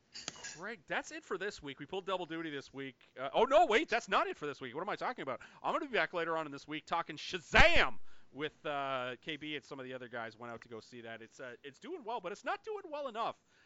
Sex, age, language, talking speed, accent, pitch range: male, 30-49, English, 285 wpm, American, 115-150 Hz